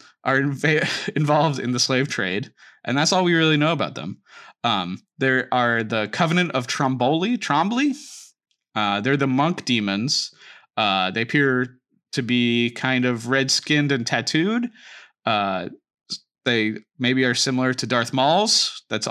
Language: English